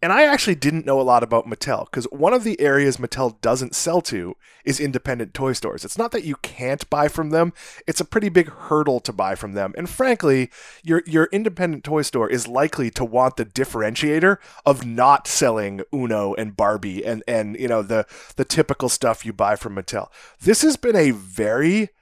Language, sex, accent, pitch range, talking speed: English, male, American, 115-160 Hz, 205 wpm